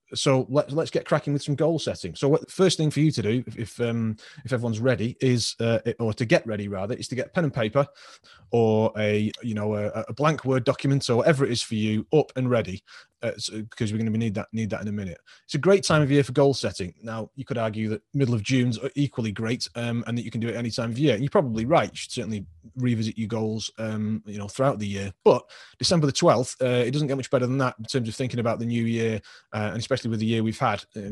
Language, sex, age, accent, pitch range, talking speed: English, male, 30-49, British, 110-135 Hz, 280 wpm